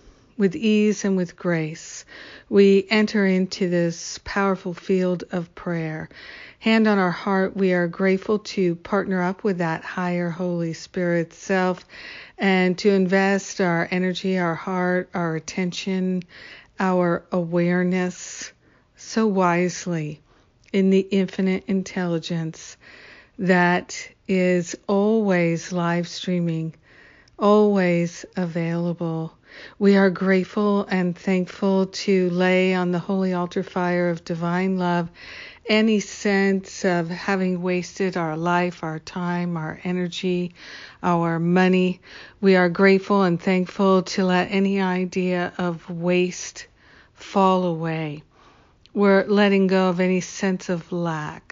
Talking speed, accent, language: 120 wpm, American, English